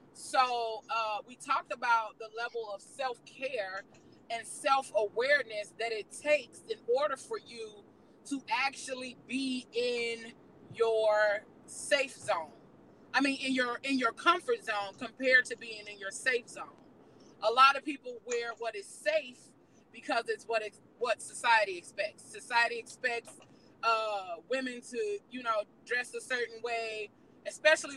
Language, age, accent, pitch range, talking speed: English, 30-49, American, 220-260 Hz, 145 wpm